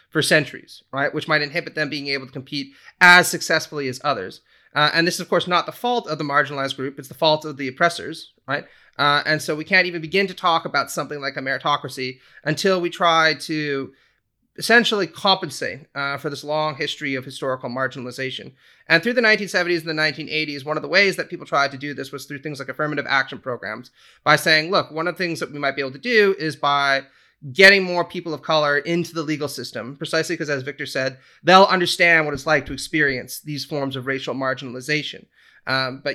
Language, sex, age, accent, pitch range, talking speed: English, male, 30-49, American, 135-165 Hz, 215 wpm